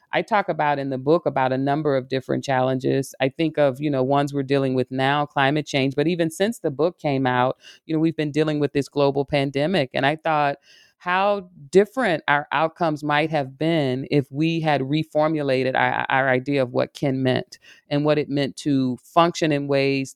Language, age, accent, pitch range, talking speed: English, 40-59, American, 135-160 Hz, 205 wpm